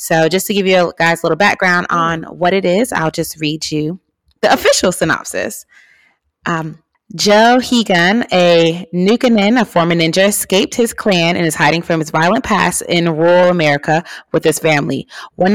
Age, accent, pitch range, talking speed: 30-49, American, 160-205 Hz, 175 wpm